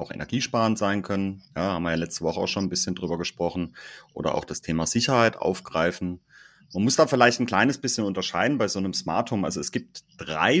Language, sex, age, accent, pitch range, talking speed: German, male, 30-49, German, 90-130 Hz, 215 wpm